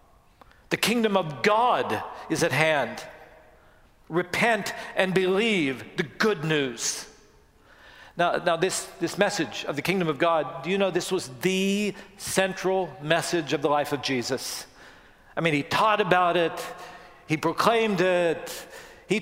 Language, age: English, 50-69